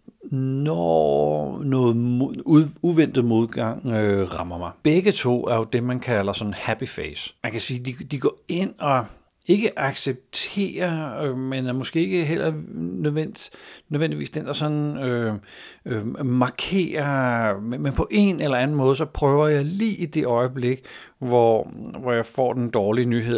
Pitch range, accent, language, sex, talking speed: 105-145 Hz, native, Danish, male, 160 wpm